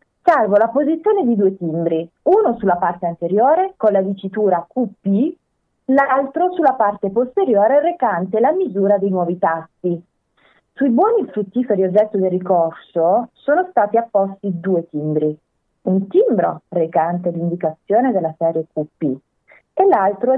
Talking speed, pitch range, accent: 130 wpm, 175-215 Hz, native